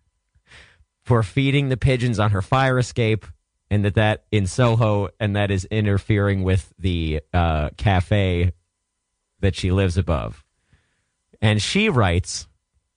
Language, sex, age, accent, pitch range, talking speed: English, male, 30-49, American, 95-145 Hz, 130 wpm